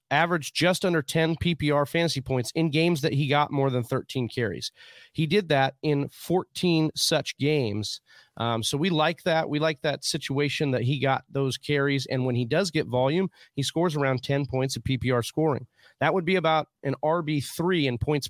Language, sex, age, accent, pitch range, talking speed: English, male, 30-49, American, 130-165 Hz, 195 wpm